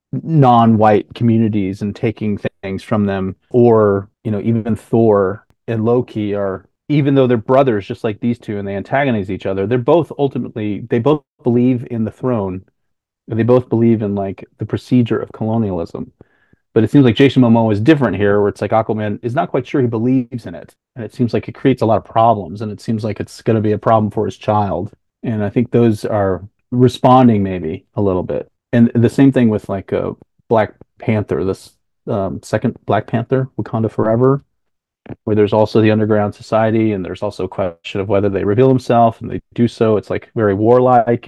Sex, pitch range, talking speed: male, 105-125 Hz, 205 wpm